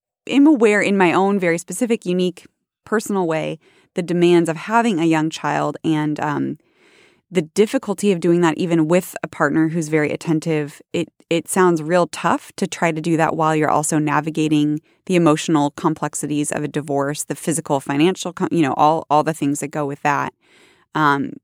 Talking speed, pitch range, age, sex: 180 wpm, 150-185 Hz, 20-39, female